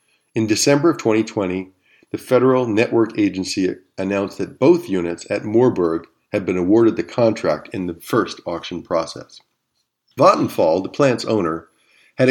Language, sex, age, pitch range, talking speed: English, male, 50-69, 90-125 Hz, 140 wpm